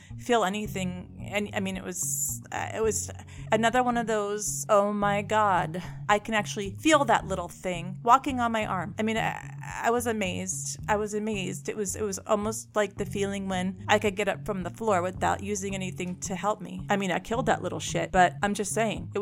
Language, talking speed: English, 220 wpm